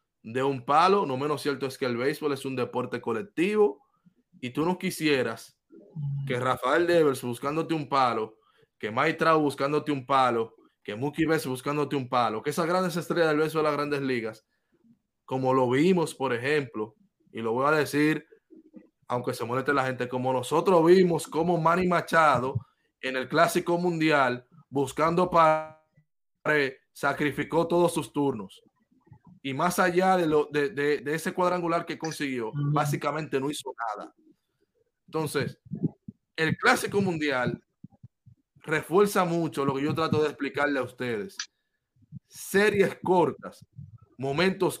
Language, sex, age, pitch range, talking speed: Spanish, male, 20-39, 135-175 Hz, 145 wpm